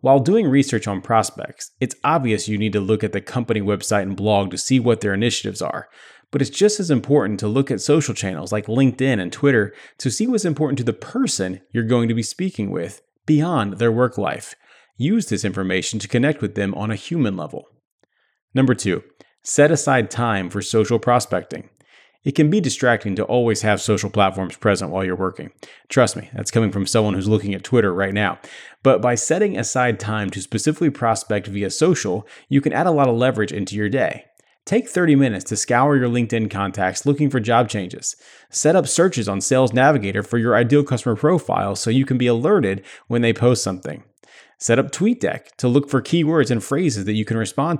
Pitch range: 105-135 Hz